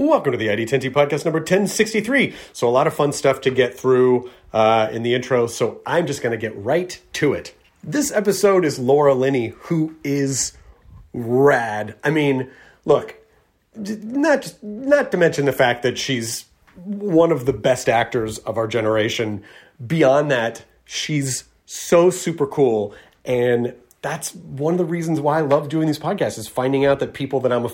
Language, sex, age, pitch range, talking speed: English, male, 30-49, 120-155 Hz, 175 wpm